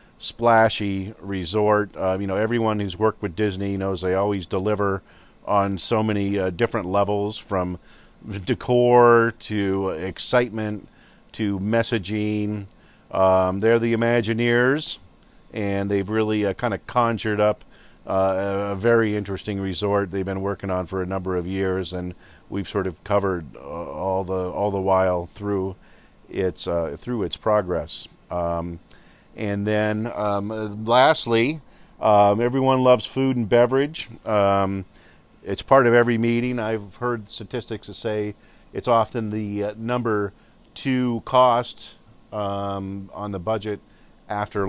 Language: English